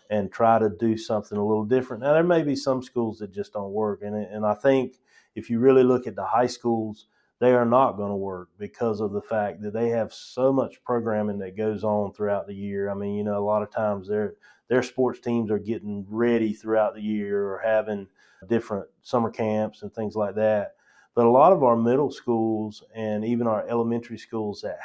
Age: 30-49